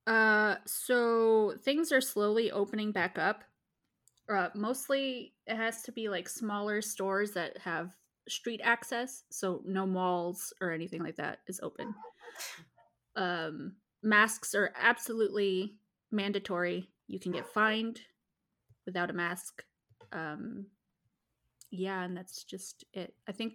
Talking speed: 125 wpm